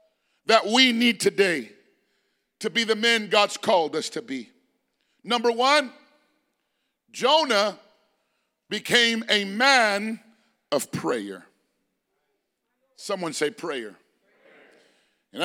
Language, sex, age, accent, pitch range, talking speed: English, male, 50-69, American, 220-265 Hz, 95 wpm